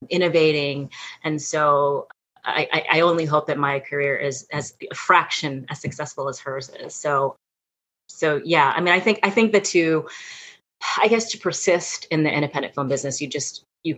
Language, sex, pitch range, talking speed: English, female, 140-170 Hz, 180 wpm